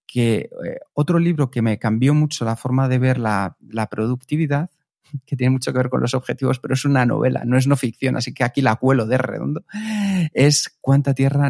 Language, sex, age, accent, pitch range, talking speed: Spanish, male, 40-59, Spanish, 115-145 Hz, 215 wpm